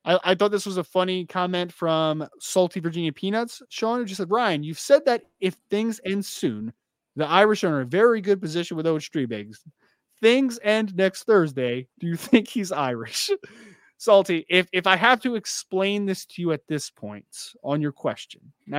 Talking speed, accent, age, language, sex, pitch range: 195 wpm, American, 20-39, English, male, 145-190 Hz